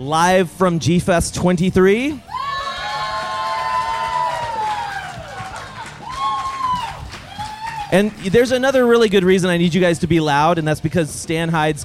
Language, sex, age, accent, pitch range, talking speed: English, male, 30-49, American, 145-200 Hz, 110 wpm